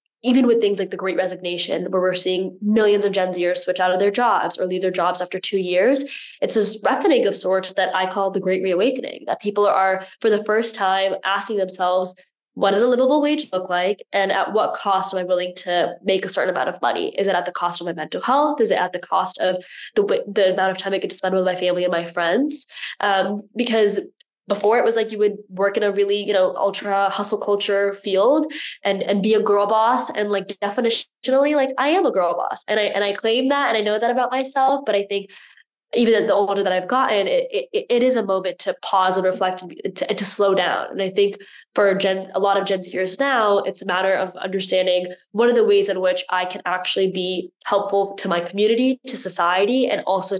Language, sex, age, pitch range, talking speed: English, female, 10-29, 185-220 Hz, 240 wpm